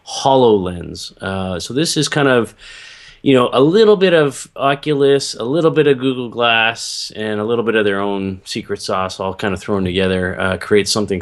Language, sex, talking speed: English, male, 200 wpm